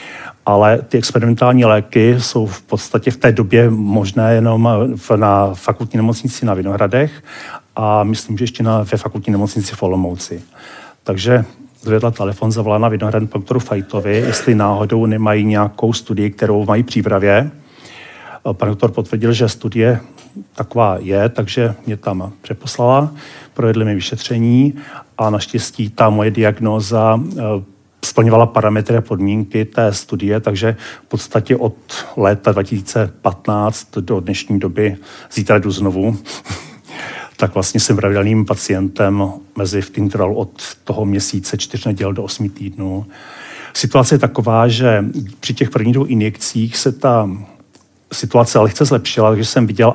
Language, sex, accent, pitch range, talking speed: Czech, male, native, 105-120 Hz, 135 wpm